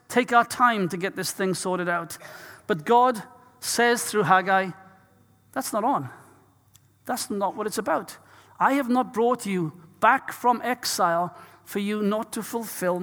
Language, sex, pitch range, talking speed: English, male, 195-230 Hz, 160 wpm